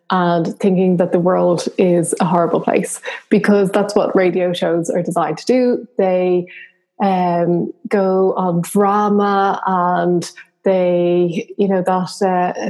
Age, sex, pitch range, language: 20-39, female, 180-210 Hz, English